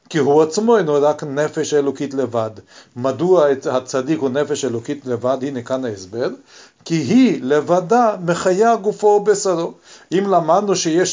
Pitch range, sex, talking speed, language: 145-200 Hz, male, 140 wpm, Hebrew